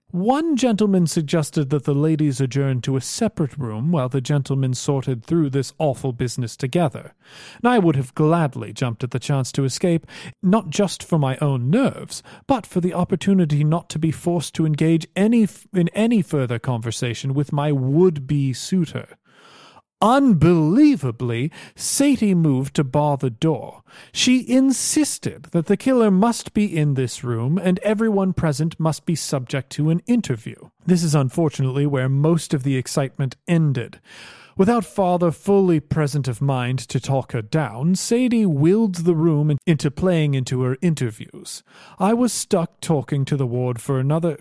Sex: male